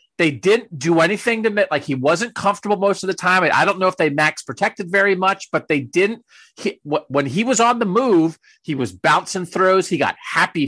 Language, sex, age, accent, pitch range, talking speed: English, male, 40-59, American, 155-225 Hz, 225 wpm